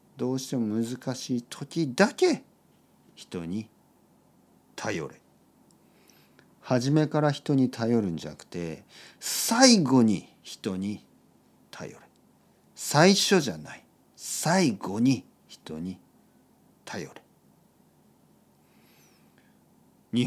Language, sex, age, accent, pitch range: Japanese, male, 50-69, native, 100-135 Hz